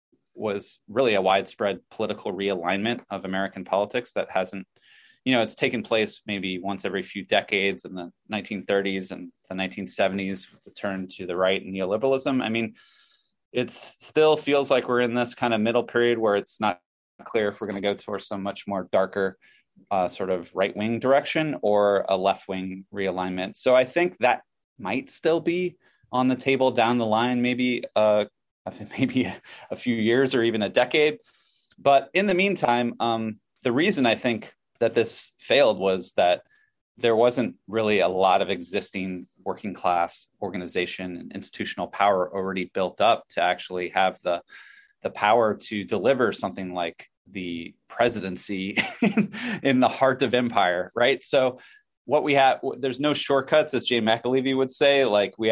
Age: 30-49